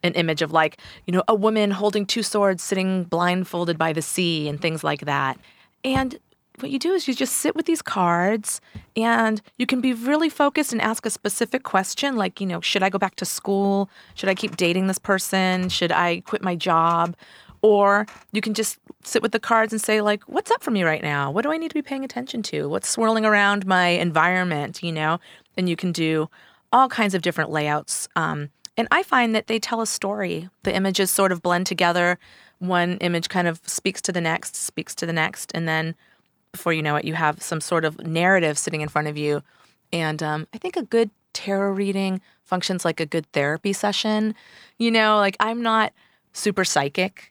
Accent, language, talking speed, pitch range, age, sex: American, English, 215 wpm, 170-220 Hz, 30-49, female